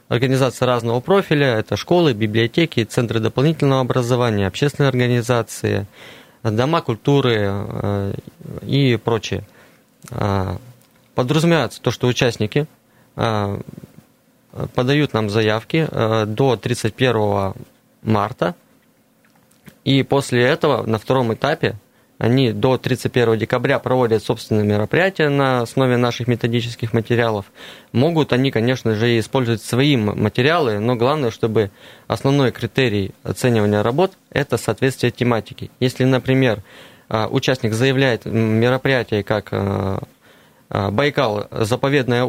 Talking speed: 100 wpm